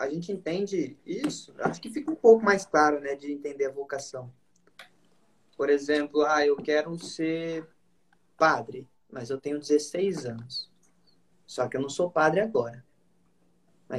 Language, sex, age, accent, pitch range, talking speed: Portuguese, male, 20-39, Brazilian, 150-220 Hz, 155 wpm